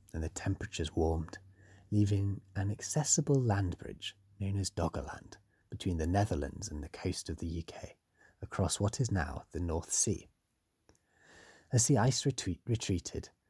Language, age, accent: English, 30-49, British